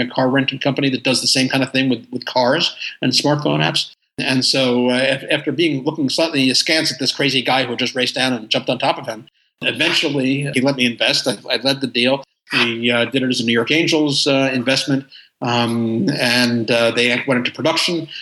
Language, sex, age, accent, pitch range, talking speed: English, male, 50-69, American, 120-135 Hz, 225 wpm